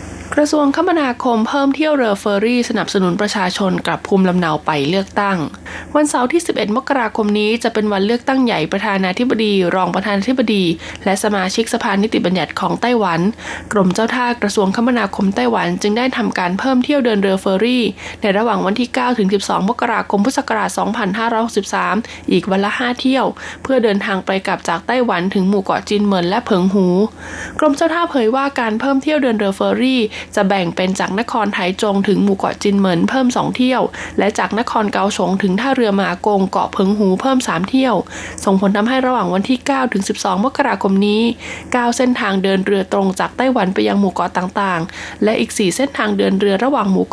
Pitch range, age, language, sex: 195-245 Hz, 20-39, Thai, female